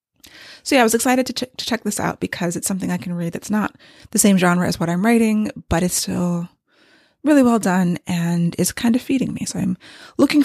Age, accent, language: 20-39, American, English